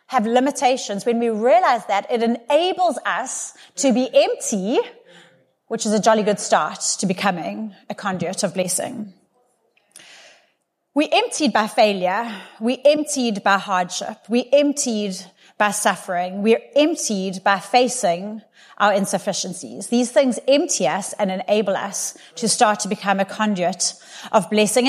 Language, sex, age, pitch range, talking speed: English, female, 30-49, 215-300 Hz, 135 wpm